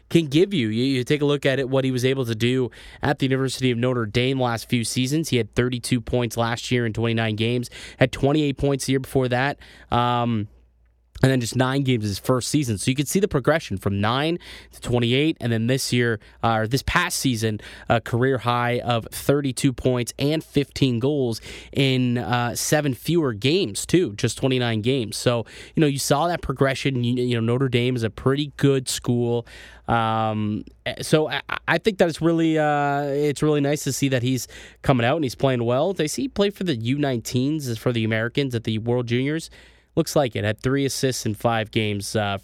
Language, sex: English, male